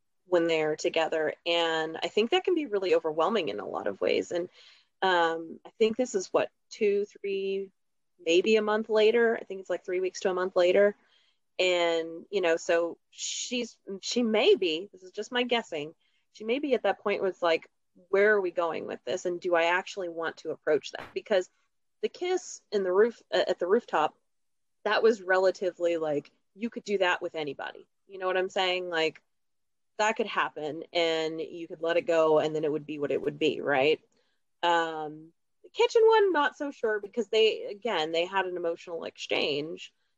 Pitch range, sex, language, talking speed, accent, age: 170-230 Hz, female, English, 200 wpm, American, 30-49